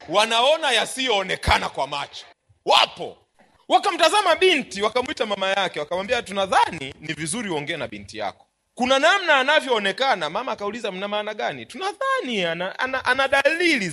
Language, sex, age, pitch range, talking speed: Swahili, male, 40-59, 160-255 Hz, 140 wpm